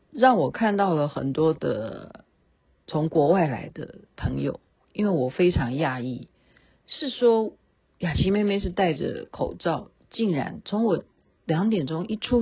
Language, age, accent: Chinese, 50-69, native